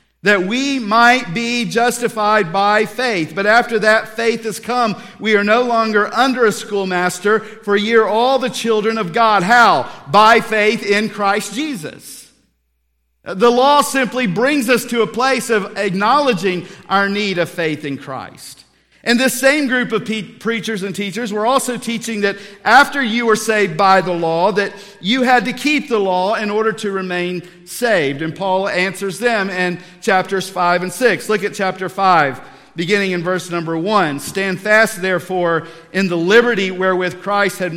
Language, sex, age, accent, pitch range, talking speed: English, male, 50-69, American, 175-225 Hz, 170 wpm